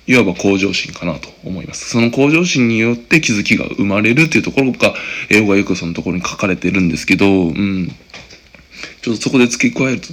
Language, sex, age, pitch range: Japanese, male, 20-39, 95-115 Hz